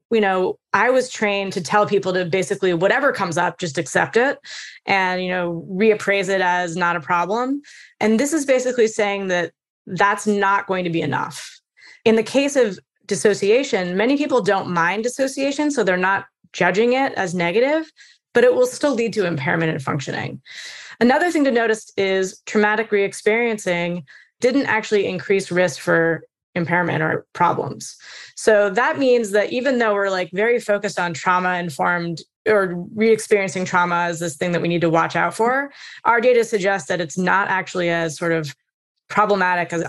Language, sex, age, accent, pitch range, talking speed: English, female, 20-39, American, 175-230 Hz, 175 wpm